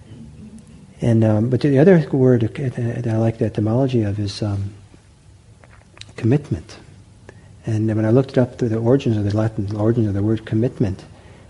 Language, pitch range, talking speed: English, 105-120 Hz, 170 wpm